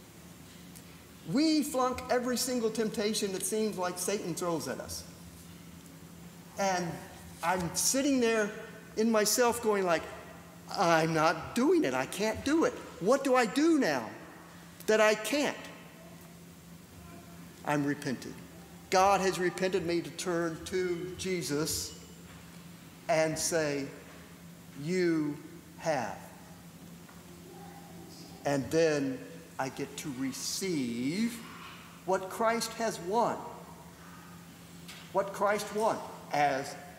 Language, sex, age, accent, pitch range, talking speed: English, male, 50-69, American, 135-205 Hz, 105 wpm